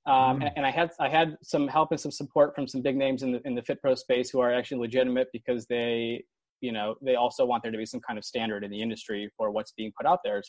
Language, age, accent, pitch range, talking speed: English, 20-39, American, 115-135 Hz, 285 wpm